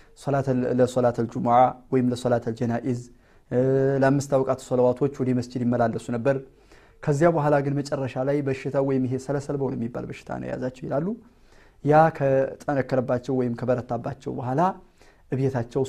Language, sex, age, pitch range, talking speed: Amharic, male, 30-49, 125-160 Hz, 140 wpm